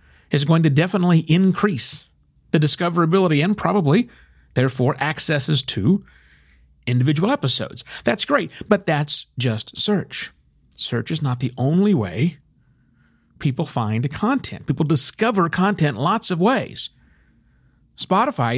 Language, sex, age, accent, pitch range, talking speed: English, male, 50-69, American, 130-195 Hz, 115 wpm